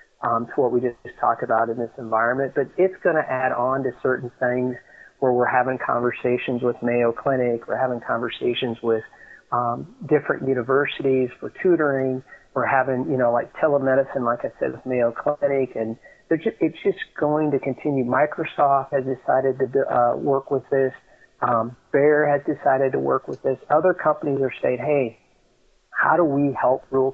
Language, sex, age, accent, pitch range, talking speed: English, male, 40-59, American, 120-140 Hz, 180 wpm